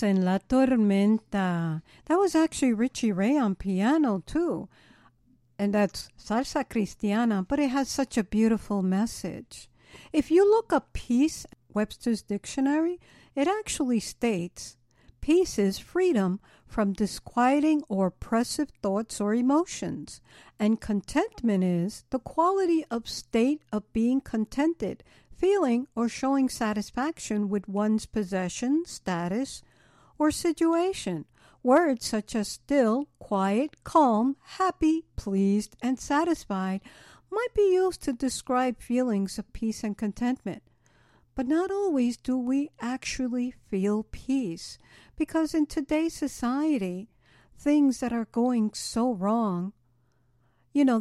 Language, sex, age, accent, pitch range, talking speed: English, female, 60-79, American, 205-285 Hz, 120 wpm